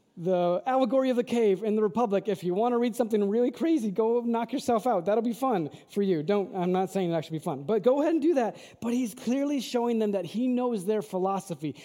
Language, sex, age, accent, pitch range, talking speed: English, male, 30-49, American, 185-230 Hz, 250 wpm